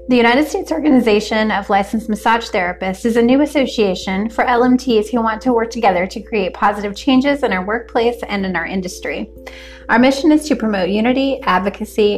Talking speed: 180 wpm